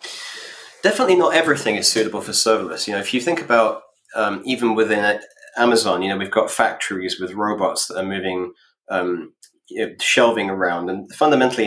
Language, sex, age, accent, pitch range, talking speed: English, male, 20-39, British, 95-120 Hz, 175 wpm